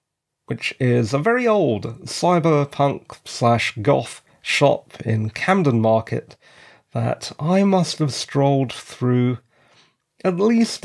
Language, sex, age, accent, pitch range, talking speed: English, male, 40-59, British, 120-175 Hz, 100 wpm